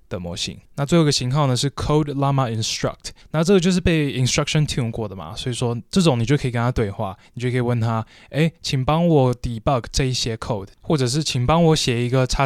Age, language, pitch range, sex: 20-39, Chinese, 120-155 Hz, male